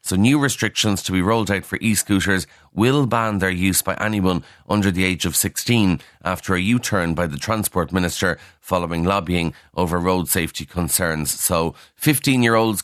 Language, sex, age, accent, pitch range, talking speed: English, male, 30-49, Irish, 90-110 Hz, 165 wpm